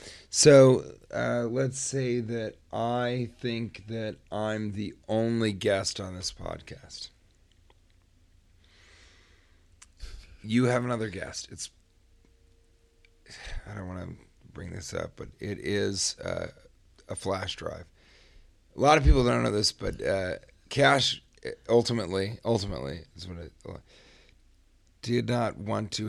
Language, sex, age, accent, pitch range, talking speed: English, male, 40-59, American, 90-115 Hz, 125 wpm